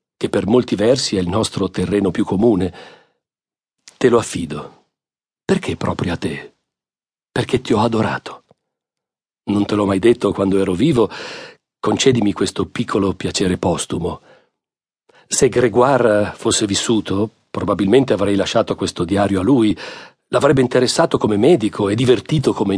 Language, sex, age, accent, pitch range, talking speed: Italian, male, 40-59, native, 95-125 Hz, 135 wpm